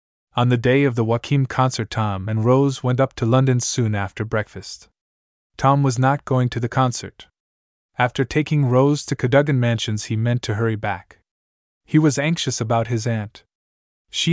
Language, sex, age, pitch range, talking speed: English, male, 20-39, 110-135 Hz, 175 wpm